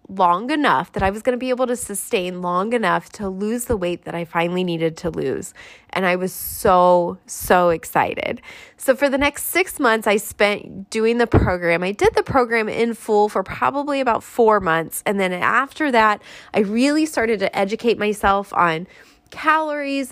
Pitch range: 185-240 Hz